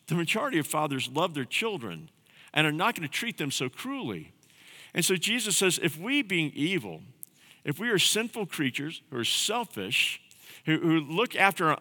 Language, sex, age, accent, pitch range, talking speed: English, male, 50-69, American, 140-190 Hz, 190 wpm